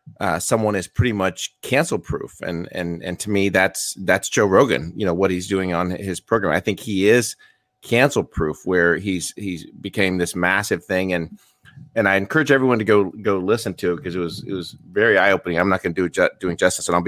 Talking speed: 230 wpm